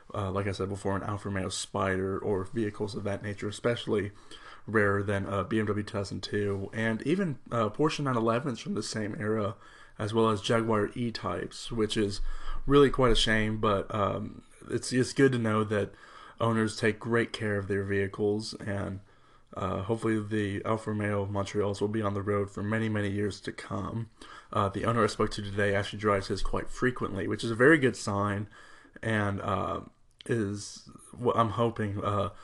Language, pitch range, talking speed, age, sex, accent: English, 100-115 Hz, 185 wpm, 30-49, male, American